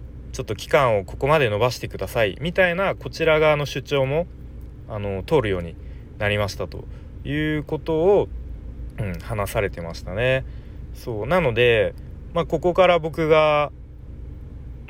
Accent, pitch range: native, 95-140 Hz